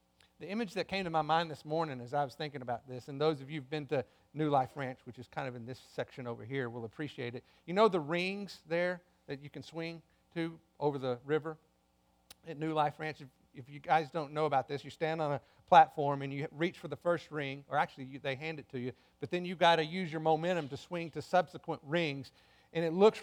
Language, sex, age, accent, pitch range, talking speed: English, male, 50-69, American, 130-190 Hz, 250 wpm